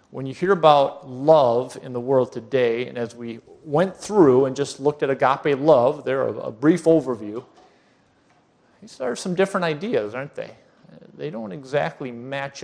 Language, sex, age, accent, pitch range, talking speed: English, male, 40-59, American, 135-165 Hz, 170 wpm